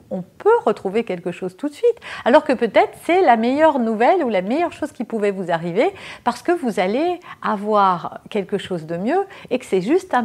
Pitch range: 205-295 Hz